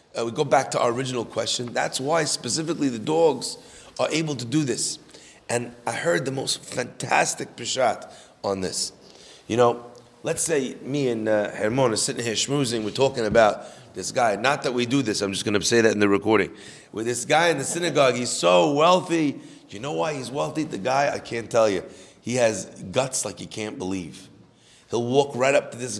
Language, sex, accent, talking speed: English, male, American, 210 wpm